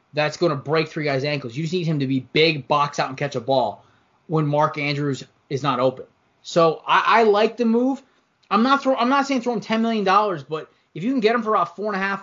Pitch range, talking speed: 130-180 Hz, 270 wpm